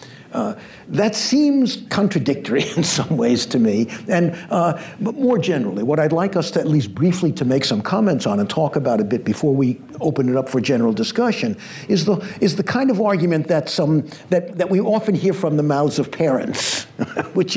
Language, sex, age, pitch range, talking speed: English, male, 60-79, 150-195 Hz, 205 wpm